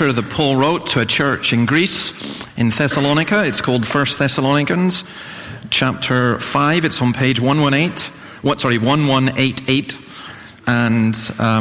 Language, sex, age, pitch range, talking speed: English, male, 40-59, 115-145 Hz, 160 wpm